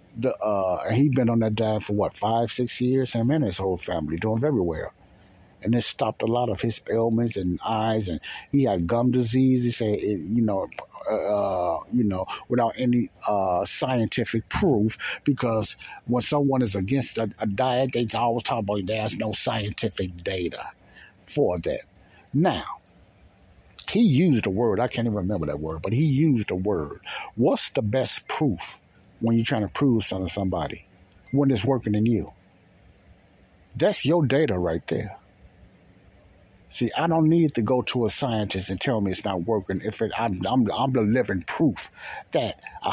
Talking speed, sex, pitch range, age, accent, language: 180 wpm, male, 100-130 Hz, 60-79, American, English